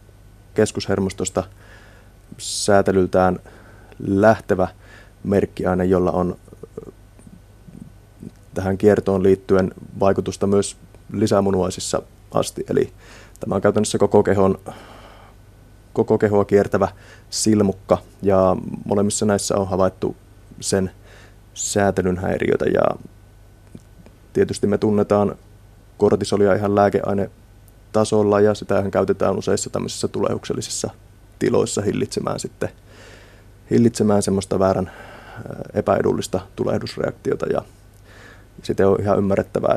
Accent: native